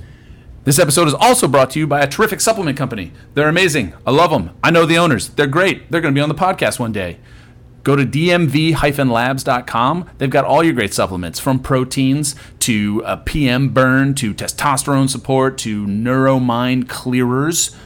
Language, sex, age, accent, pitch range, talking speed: English, male, 30-49, American, 90-135 Hz, 180 wpm